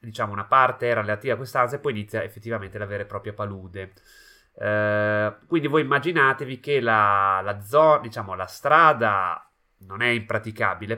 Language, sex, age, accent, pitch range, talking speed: Italian, male, 30-49, native, 100-120 Hz, 165 wpm